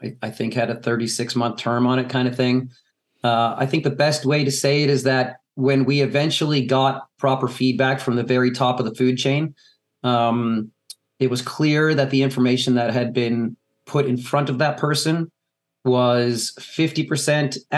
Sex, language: male, English